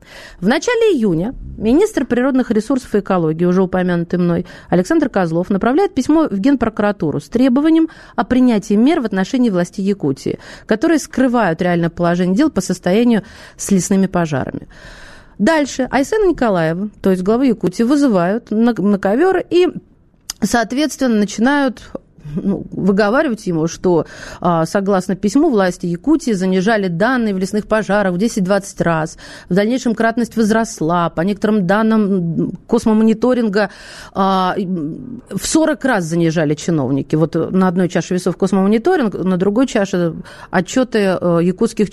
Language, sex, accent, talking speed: Russian, female, native, 125 wpm